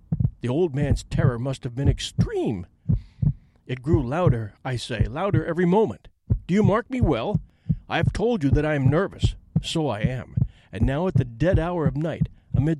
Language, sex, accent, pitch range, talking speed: English, male, American, 120-160 Hz, 190 wpm